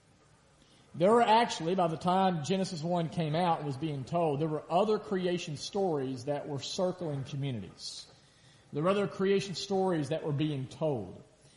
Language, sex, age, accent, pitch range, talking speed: English, male, 40-59, American, 145-185 Hz, 165 wpm